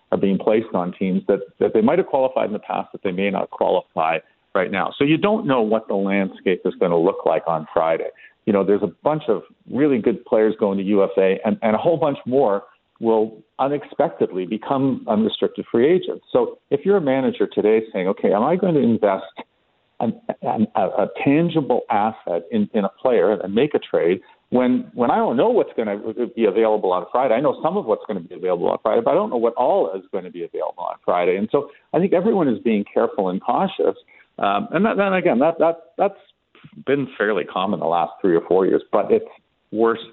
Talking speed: 225 wpm